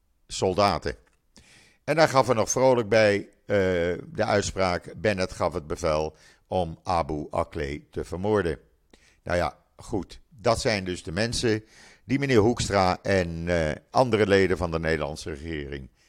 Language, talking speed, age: Dutch, 145 wpm, 50-69